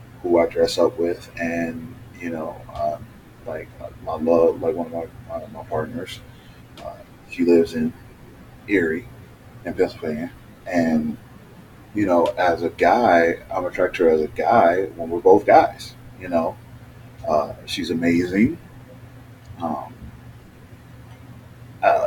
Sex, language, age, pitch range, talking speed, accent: male, English, 30-49, 95-125 Hz, 135 wpm, American